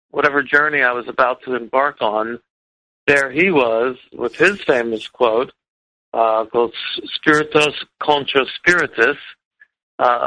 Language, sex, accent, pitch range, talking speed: English, male, American, 120-155 Hz, 125 wpm